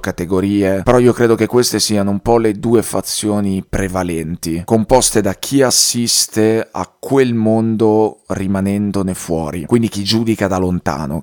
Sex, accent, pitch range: male, native, 95-115 Hz